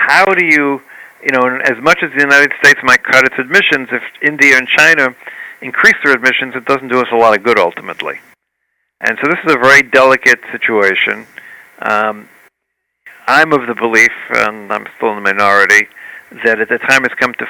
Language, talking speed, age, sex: English, 195 wpm, 50-69, male